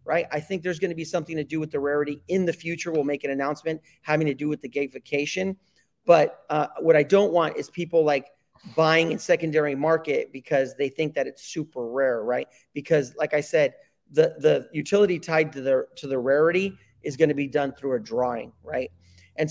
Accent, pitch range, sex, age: American, 145-175 Hz, male, 40-59